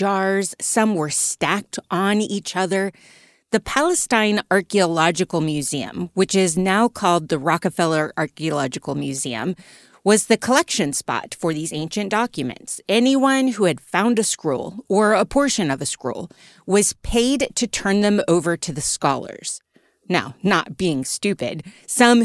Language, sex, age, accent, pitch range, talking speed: English, female, 30-49, American, 165-215 Hz, 145 wpm